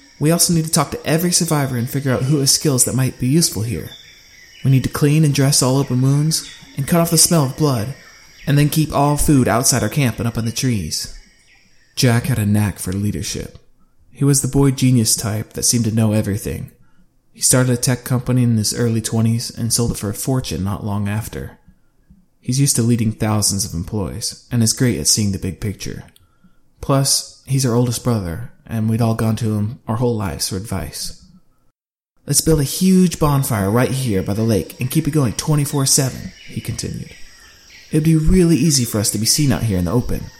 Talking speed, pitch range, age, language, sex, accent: 215 wpm, 110-155 Hz, 20-39, English, male, American